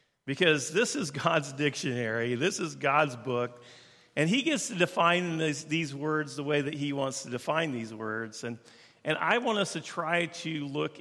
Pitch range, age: 125-160 Hz, 50-69